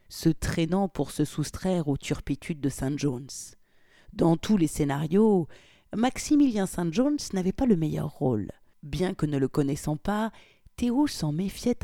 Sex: female